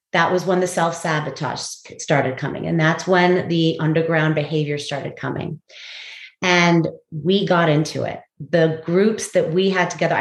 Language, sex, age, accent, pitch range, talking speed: English, female, 30-49, American, 165-190 Hz, 155 wpm